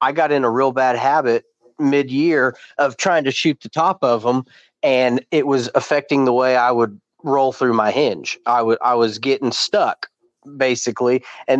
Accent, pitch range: American, 115-135 Hz